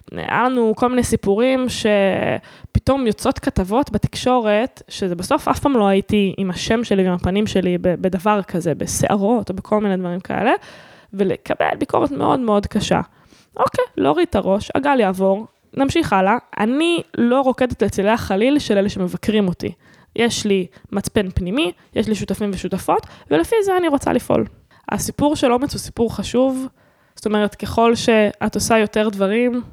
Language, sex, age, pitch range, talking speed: Hebrew, female, 10-29, 200-275 Hz, 155 wpm